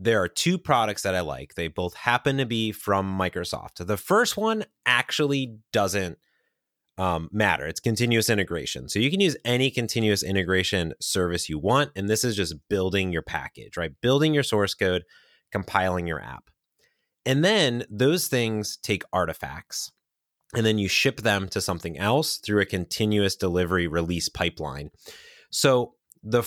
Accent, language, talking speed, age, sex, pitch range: American, English, 160 wpm, 30-49, male, 90-115 Hz